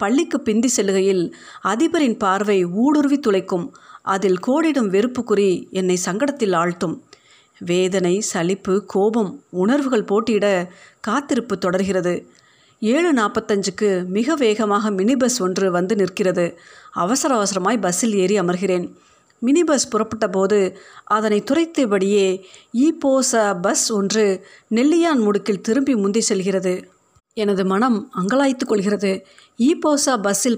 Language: Tamil